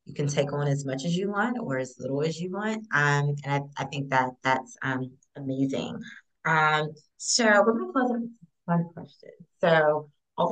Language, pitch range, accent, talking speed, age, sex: English, 140-180 Hz, American, 200 wpm, 30-49, female